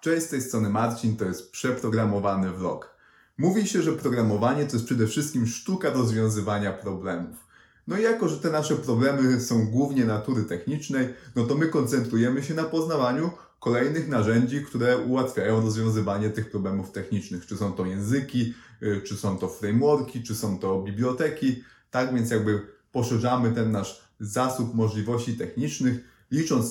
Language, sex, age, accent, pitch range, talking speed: Polish, male, 30-49, native, 110-140 Hz, 155 wpm